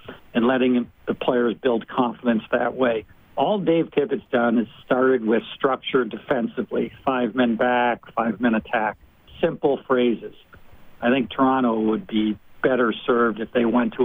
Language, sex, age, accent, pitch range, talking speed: English, male, 60-79, American, 115-130 Hz, 155 wpm